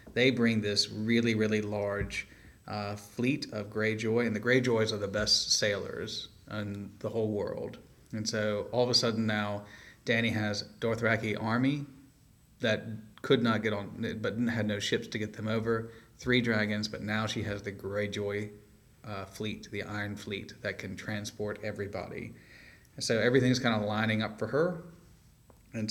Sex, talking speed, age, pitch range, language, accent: male, 165 wpm, 30-49, 105-115 Hz, English, American